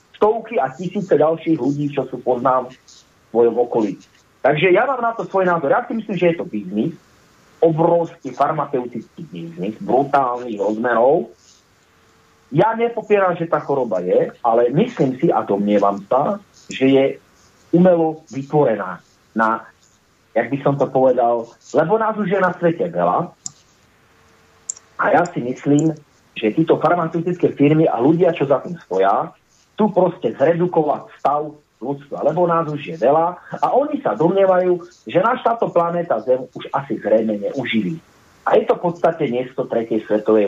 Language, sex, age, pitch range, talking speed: Slovak, male, 40-59, 125-180 Hz, 155 wpm